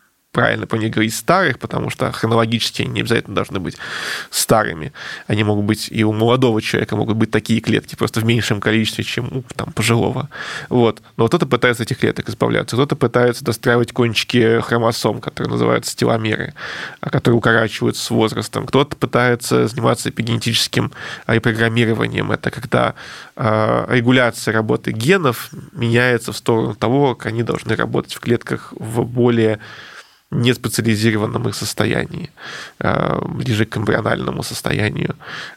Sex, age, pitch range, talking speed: male, 20-39, 110-125 Hz, 135 wpm